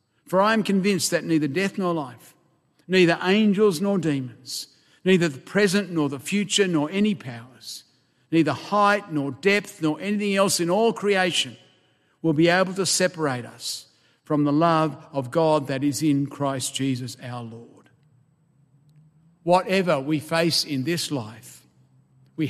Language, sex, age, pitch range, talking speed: English, male, 50-69, 130-175 Hz, 150 wpm